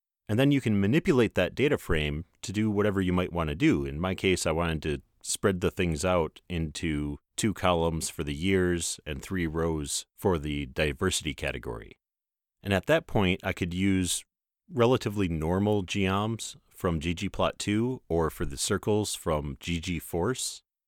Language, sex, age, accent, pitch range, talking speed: English, male, 30-49, American, 80-100 Hz, 165 wpm